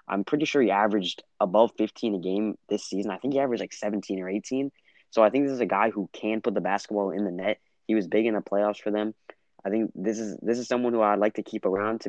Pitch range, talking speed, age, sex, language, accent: 95-110 Hz, 280 wpm, 20-39, male, English, American